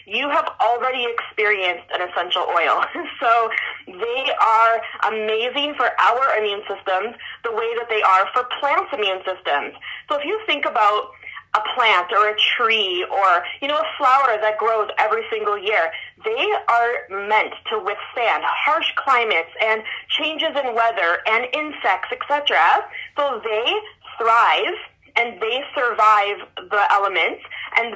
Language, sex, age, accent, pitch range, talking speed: English, female, 30-49, American, 215-315 Hz, 145 wpm